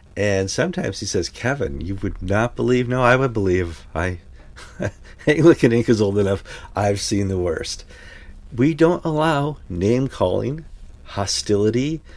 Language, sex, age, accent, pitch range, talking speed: English, male, 50-69, American, 85-110 Hz, 150 wpm